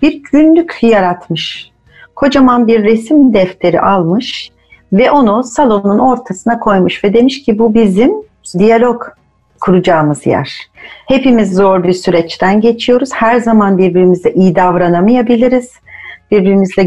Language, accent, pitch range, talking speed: Turkish, native, 190-255 Hz, 115 wpm